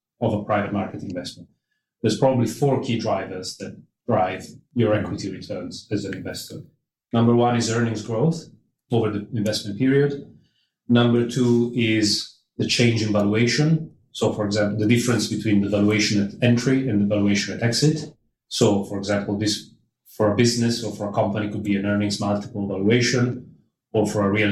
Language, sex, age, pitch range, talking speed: English, male, 30-49, 105-120 Hz, 170 wpm